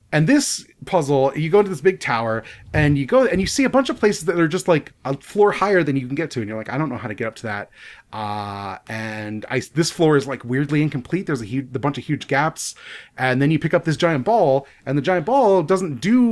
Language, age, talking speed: English, 30-49, 265 wpm